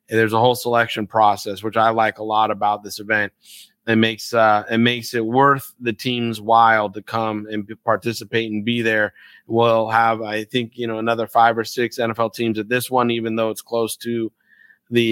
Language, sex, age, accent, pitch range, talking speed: English, male, 20-39, American, 110-125 Hz, 205 wpm